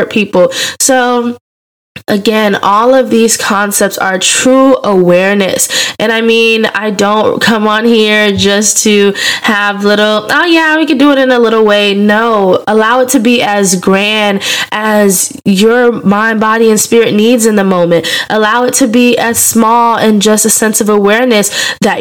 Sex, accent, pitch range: female, American, 200-245 Hz